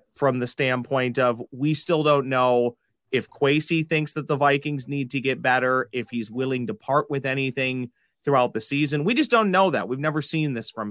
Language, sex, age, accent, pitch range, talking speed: English, male, 30-49, American, 120-145 Hz, 210 wpm